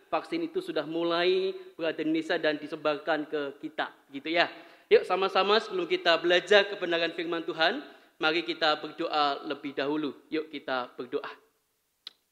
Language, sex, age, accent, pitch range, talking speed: Indonesian, male, 30-49, native, 160-205 Hz, 135 wpm